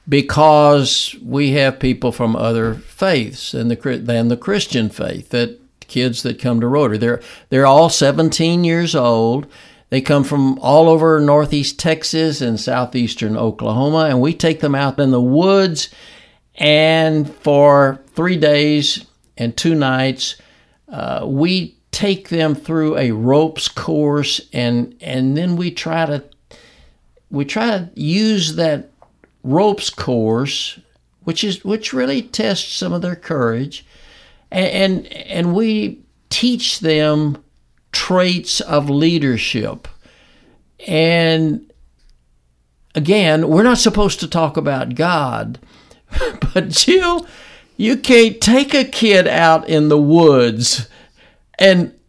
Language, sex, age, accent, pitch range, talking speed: English, male, 60-79, American, 130-180 Hz, 130 wpm